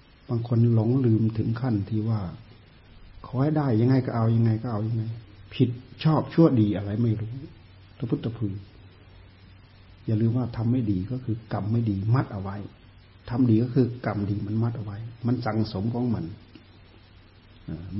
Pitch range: 105-120 Hz